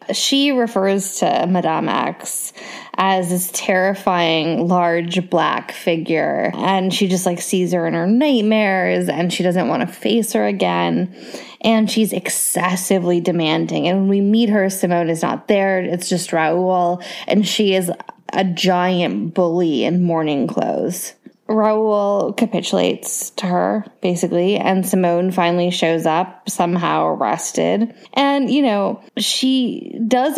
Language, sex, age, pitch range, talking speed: English, female, 10-29, 180-230 Hz, 140 wpm